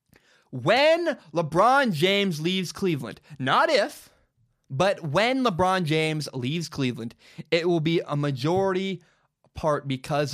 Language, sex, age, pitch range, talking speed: English, male, 20-39, 130-215 Hz, 115 wpm